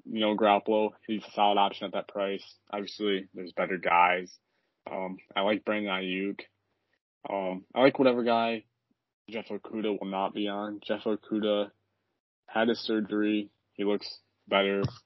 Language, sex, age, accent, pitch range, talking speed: English, male, 20-39, American, 90-100 Hz, 150 wpm